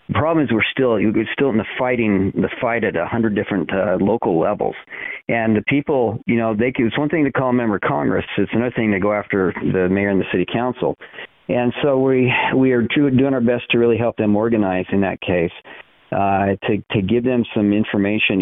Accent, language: American, English